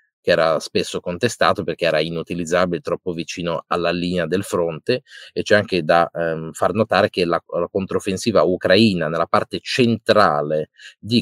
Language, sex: Italian, male